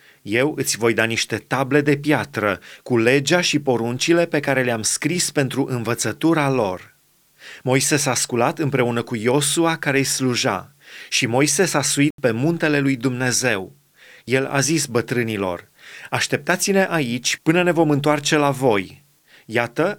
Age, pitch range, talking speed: 30-49, 130-160 Hz, 145 wpm